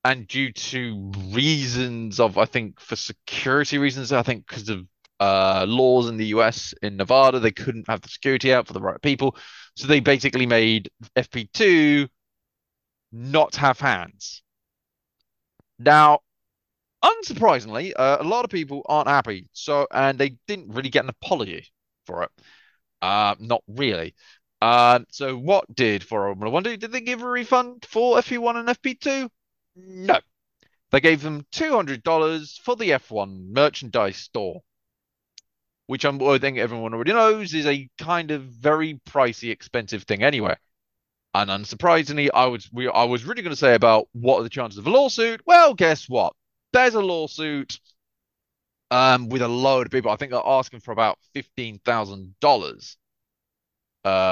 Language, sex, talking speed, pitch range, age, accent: English, male, 155 wpm, 110-150 Hz, 20-39, British